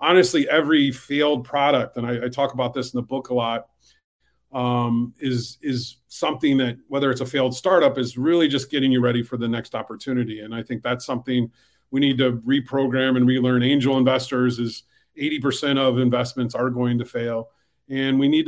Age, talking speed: 40-59, 190 wpm